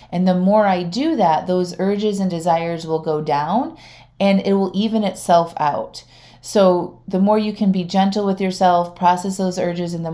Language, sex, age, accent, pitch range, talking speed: English, female, 30-49, American, 160-210 Hz, 195 wpm